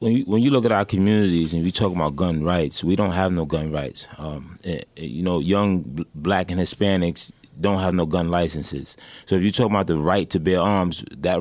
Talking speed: 215 wpm